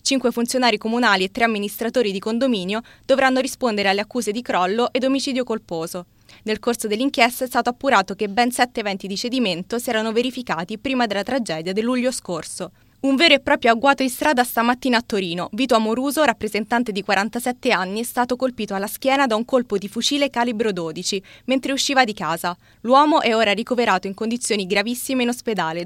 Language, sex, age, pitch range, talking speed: Italian, female, 20-39, 210-255 Hz, 185 wpm